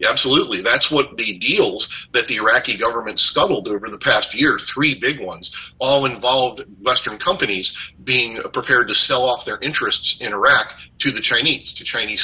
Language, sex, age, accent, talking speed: English, male, 40-59, American, 170 wpm